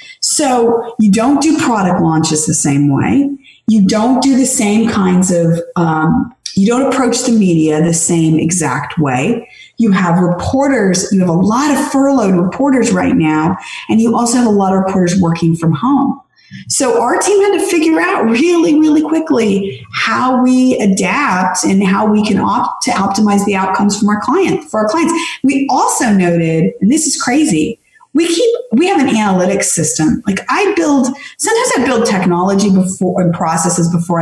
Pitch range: 175-280 Hz